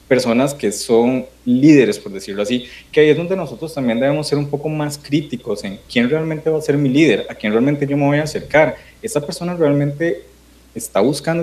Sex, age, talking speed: male, 30-49, 210 wpm